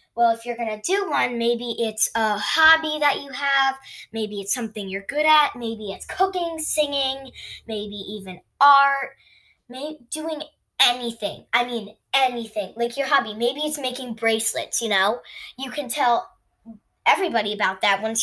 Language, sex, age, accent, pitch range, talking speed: English, female, 10-29, American, 220-280 Hz, 160 wpm